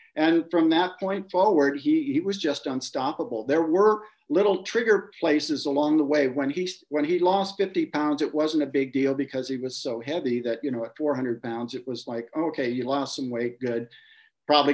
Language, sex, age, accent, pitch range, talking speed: English, male, 50-69, American, 145-215 Hz, 210 wpm